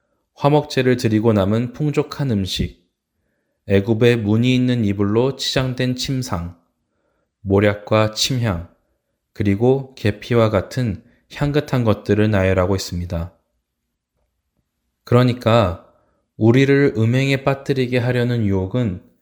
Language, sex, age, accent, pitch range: Korean, male, 20-39, native, 95-125 Hz